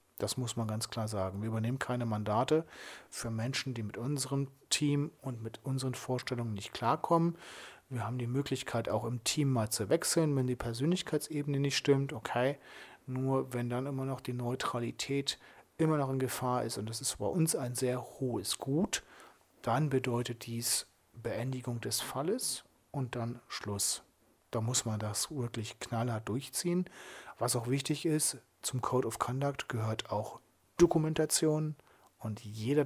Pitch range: 115-145 Hz